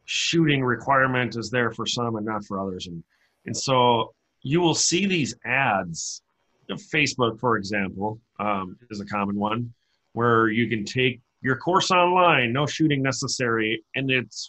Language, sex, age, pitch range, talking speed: English, male, 40-59, 110-140 Hz, 155 wpm